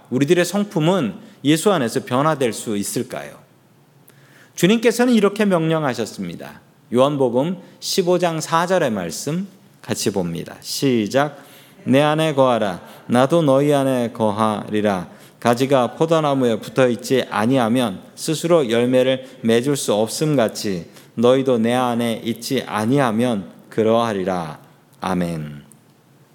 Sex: male